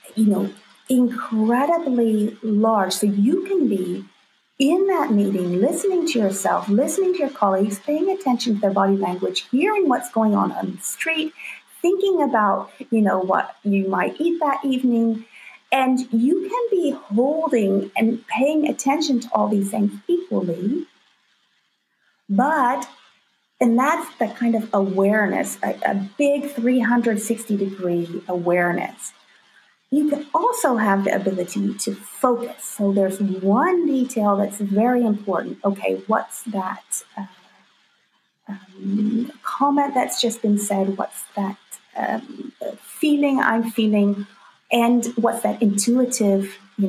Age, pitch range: 40-59, 200-275 Hz